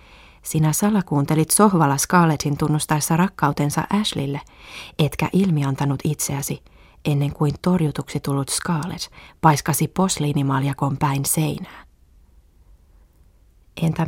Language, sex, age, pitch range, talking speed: Finnish, female, 20-39, 145-170 Hz, 85 wpm